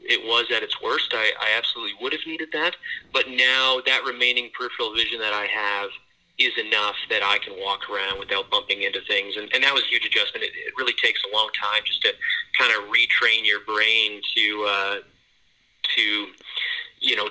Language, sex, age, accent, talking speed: English, male, 30-49, American, 200 wpm